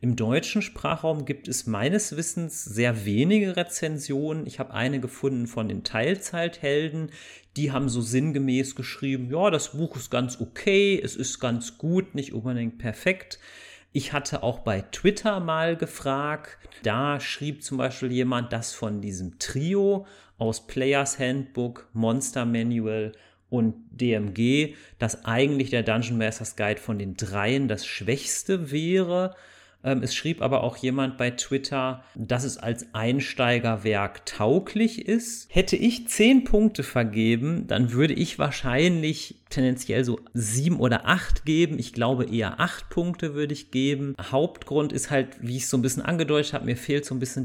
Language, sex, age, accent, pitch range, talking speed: German, male, 40-59, German, 120-150 Hz, 155 wpm